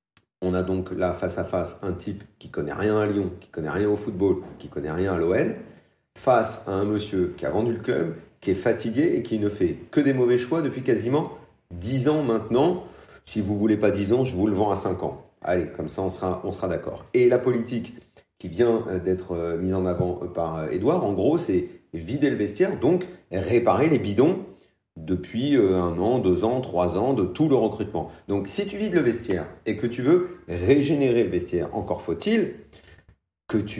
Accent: French